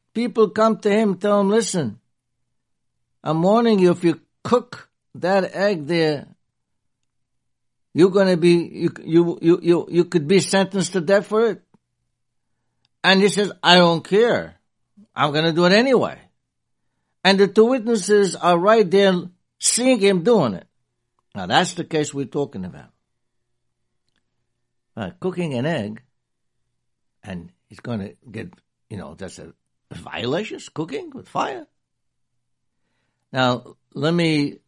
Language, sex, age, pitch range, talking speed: English, male, 60-79, 115-180 Hz, 135 wpm